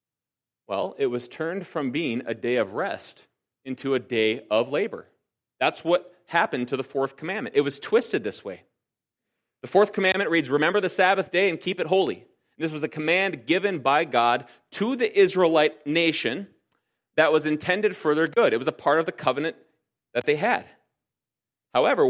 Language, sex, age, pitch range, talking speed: English, male, 30-49, 130-180 Hz, 180 wpm